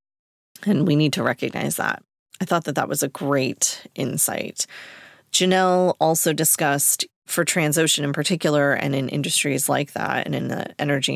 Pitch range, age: 140-170 Hz, 30-49